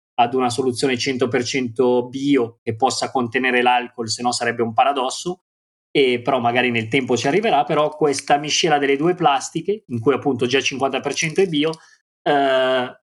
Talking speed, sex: 165 wpm, male